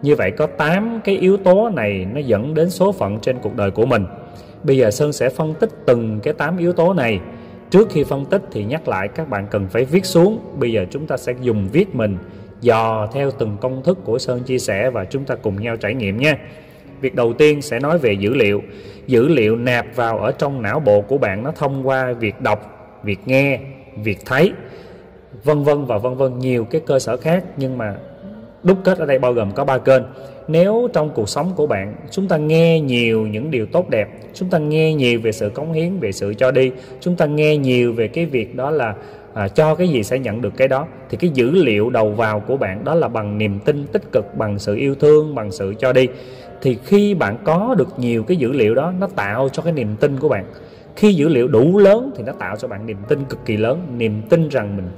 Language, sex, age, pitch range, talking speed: Vietnamese, male, 20-39, 110-160 Hz, 240 wpm